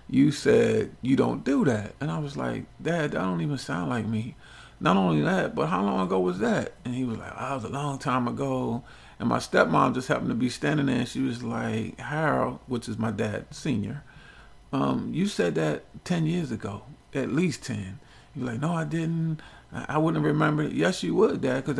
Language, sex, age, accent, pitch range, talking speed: English, male, 40-59, American, 115-165 Hz, 215 wpm